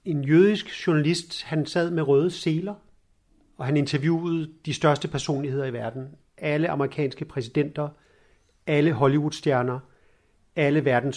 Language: Danish